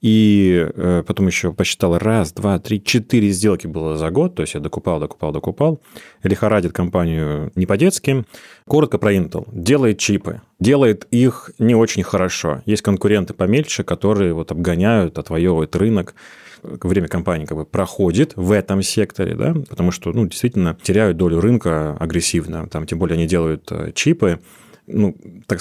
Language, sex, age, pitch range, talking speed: Russian, male, 30-49, 85-105 Hz, 150 wpm